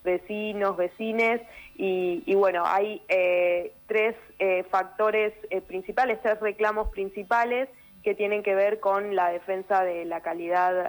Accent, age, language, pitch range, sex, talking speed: Argentinian, 20-39, Spanish, 175-205 Hz, female, 140 wpm